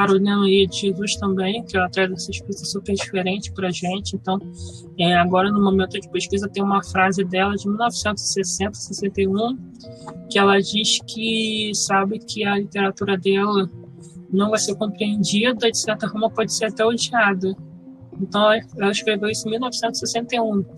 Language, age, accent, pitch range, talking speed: Portuguese, 20-39, Brazilian, 185-210 Hz, 150 wpm